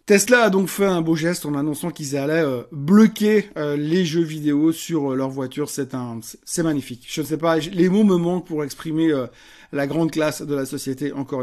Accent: French